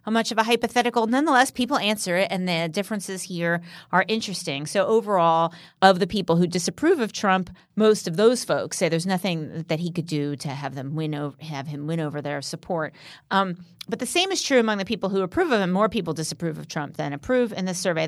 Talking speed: 225 wpm